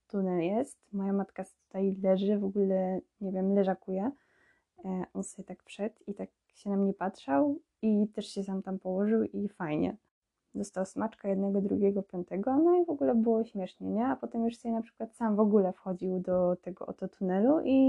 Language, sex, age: Polish, female, 10-29